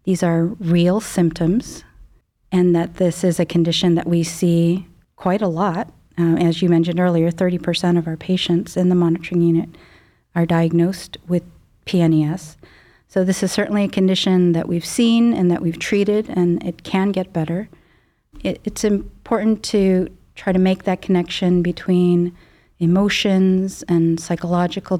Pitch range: 170-190 Hz